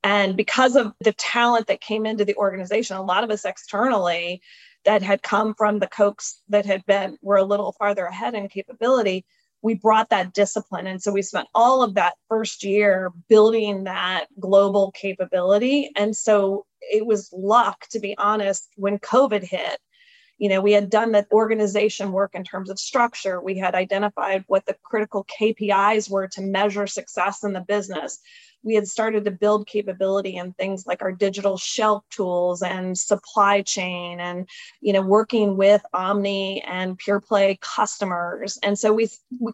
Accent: American